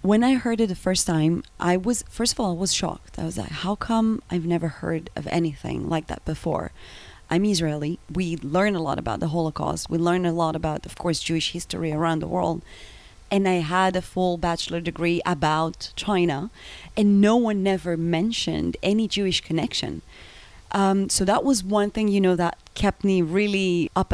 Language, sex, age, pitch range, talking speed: English, female, 30-49, 165-205 Hz, 195 wpm